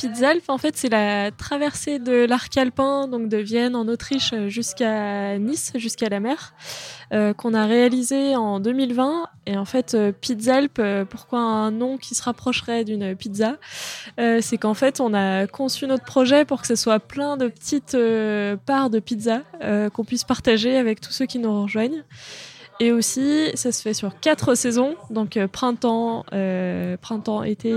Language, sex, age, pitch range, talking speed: French, female, 20-39, 210-255 Hz, 175 wpm